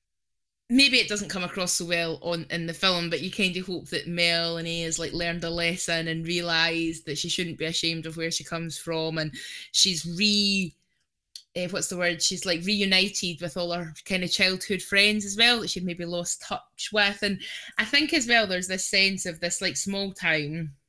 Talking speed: 215 wpm